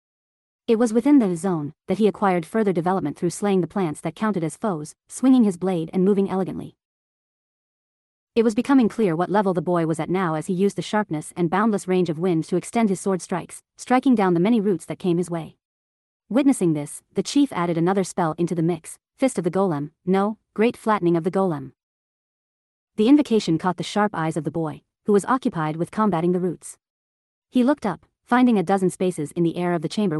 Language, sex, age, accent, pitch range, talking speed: English, female, 30-49, American, 170-210 Hz, 215 wpm